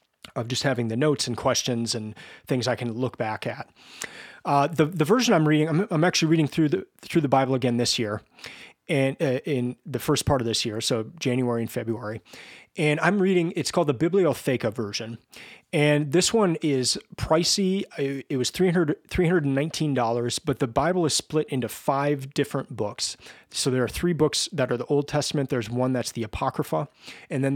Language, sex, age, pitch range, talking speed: English, male, 30-49, 125-150 Hz, 190 wpm